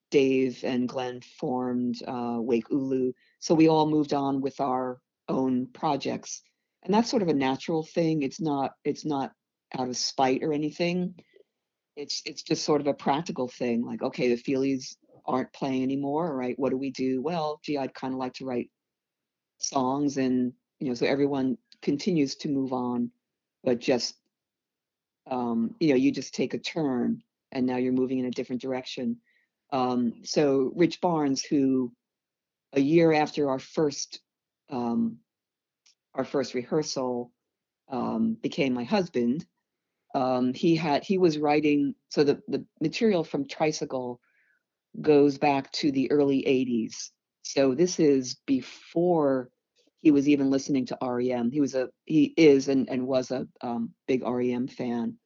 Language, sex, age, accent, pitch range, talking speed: English, female, 50-69, American, 125-150 Hz, 160 wpm